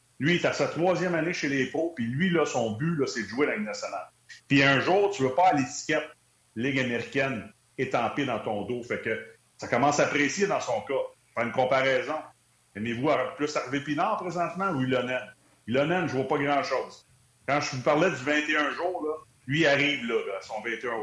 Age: 40-59